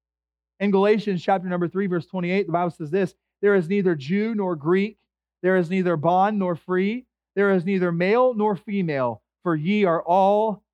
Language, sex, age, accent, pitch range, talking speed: English, male, 30-49, American, 145-200 Hz, 185 wpm